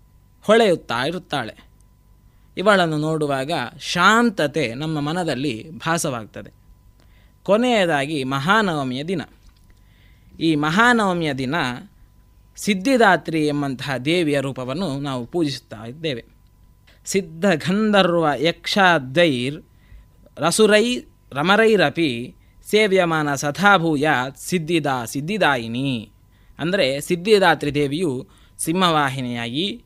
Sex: male